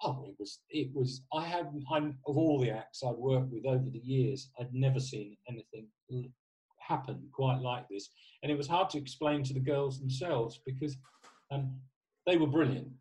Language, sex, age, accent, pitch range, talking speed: English, male, 40-59, British, 125-145 Hz, 185 wpm